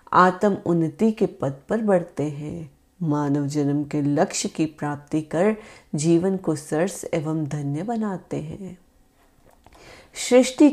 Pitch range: 150-200 Hz